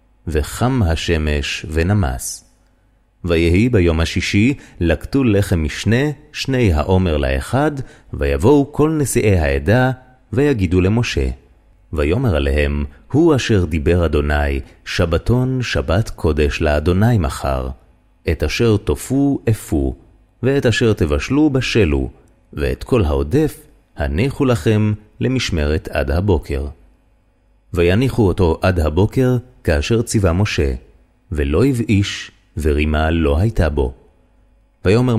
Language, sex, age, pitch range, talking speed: Hebrew, male, 30-49, 80-120 Hz, 100 wpm